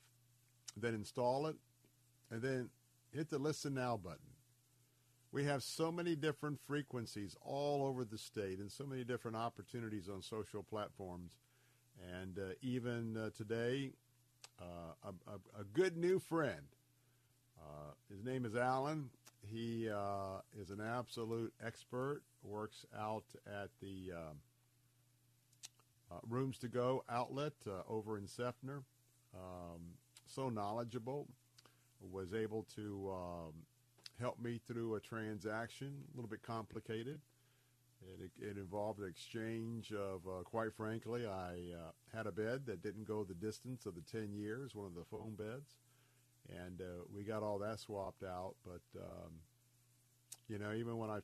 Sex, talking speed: male, 145 wpm